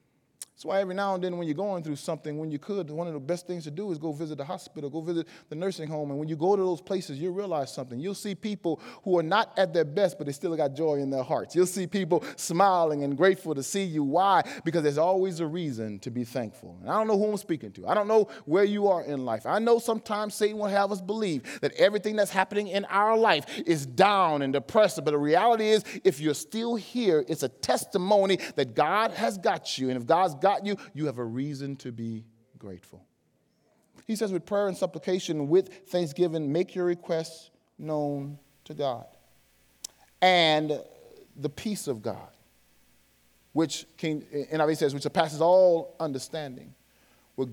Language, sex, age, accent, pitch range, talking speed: English, male, 30-49, American, 145-195 Hz, 210 wpm